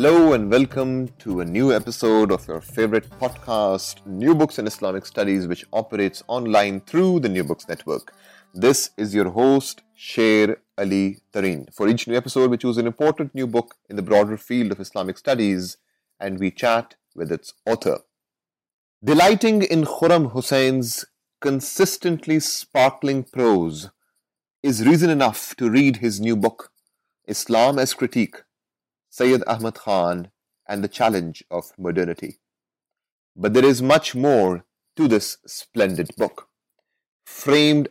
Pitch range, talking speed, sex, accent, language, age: 100-135 Hz, 140 wpm, male, Indian, English, 30-49